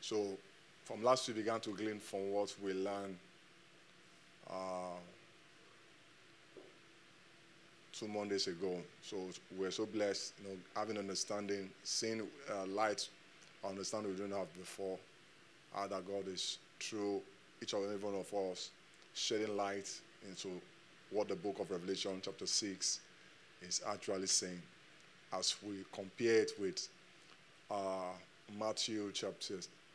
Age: 20-39